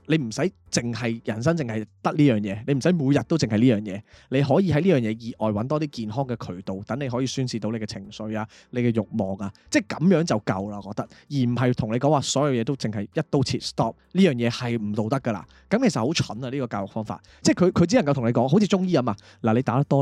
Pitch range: 110-150 Hz